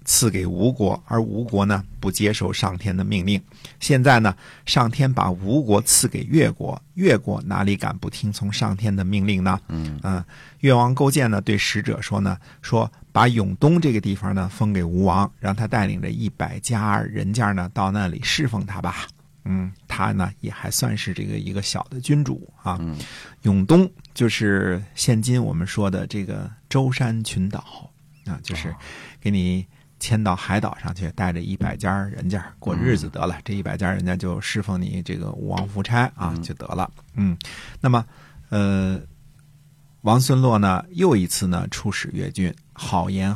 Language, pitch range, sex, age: Chinese, 95-125 Hz, male, 50-69